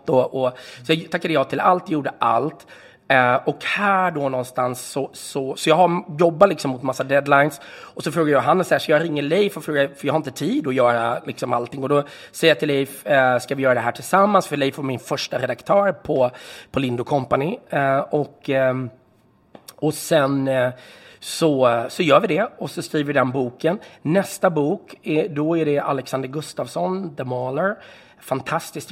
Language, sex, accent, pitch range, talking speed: Swedish, male, native, 125-155 Hz, 205 wpm